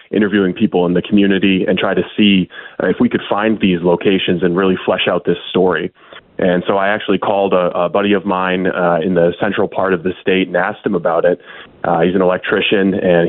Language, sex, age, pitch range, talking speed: English, male, 20-39, 90-105 Hz, 225 wpm